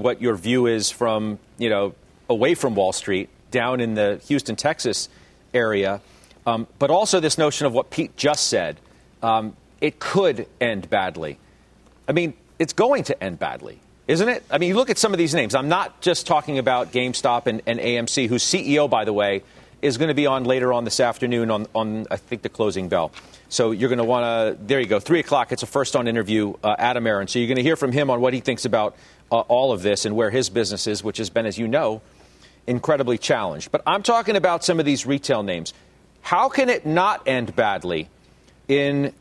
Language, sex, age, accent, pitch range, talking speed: English, male, 40-59, American, 115-150 Hz, 220 wpm